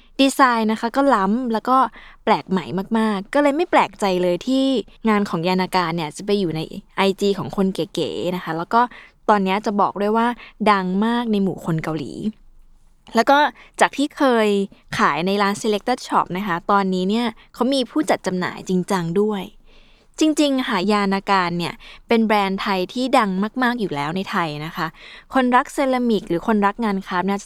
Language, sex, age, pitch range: Thai, female, 20-39, 185-240 Hz